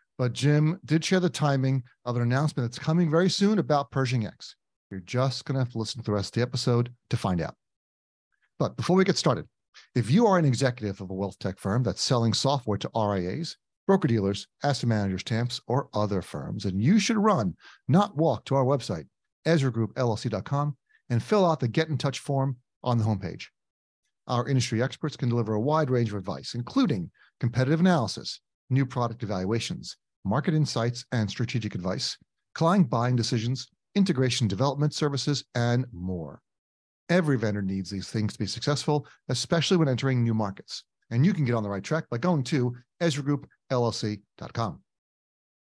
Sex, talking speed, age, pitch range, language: male, 175 wpm, 40-59, 110-145 Hz, English